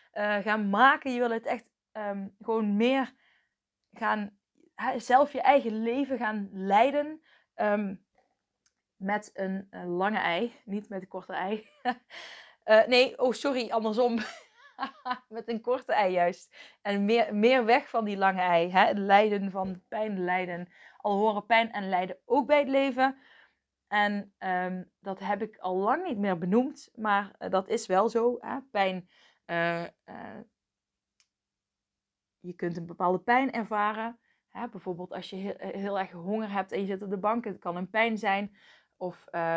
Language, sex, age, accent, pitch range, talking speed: Dutch, female, 20-39, Dutch, 185-230 Hz, 160 wpm